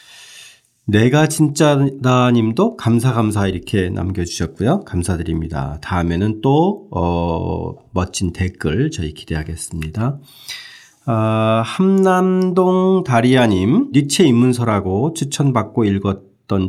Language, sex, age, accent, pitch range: Korean, male, 40-59, native, 95-130 Hz